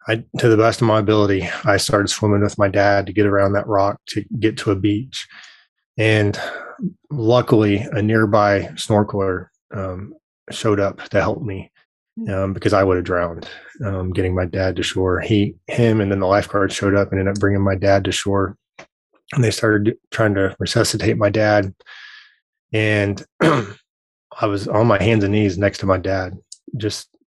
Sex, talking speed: male, 180 wpm